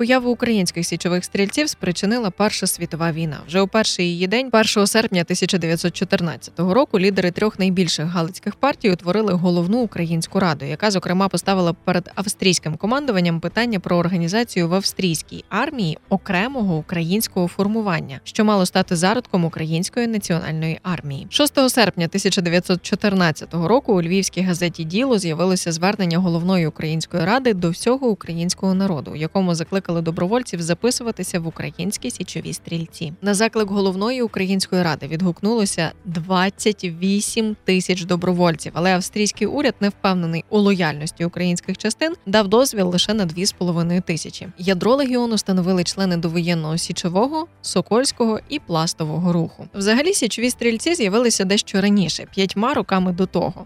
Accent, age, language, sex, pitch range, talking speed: native, 20-39, Ukrainian, female, 175-215 Hz, 130 wpm